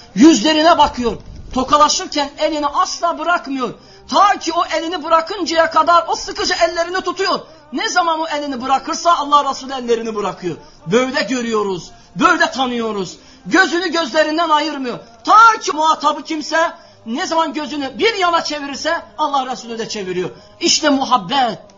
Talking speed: 130 wpm